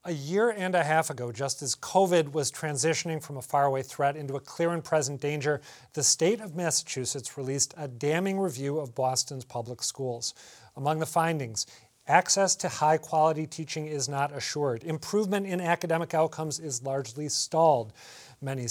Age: 40-59